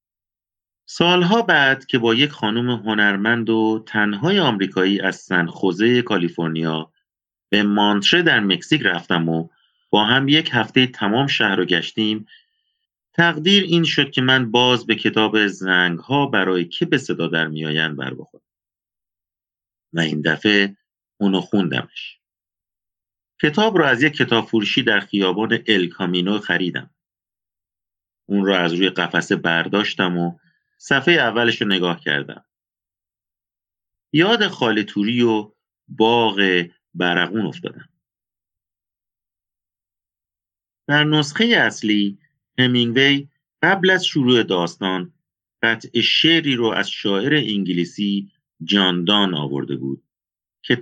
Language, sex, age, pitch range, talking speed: Persian, male, 40-59, 90-125 Hz, 115 wpm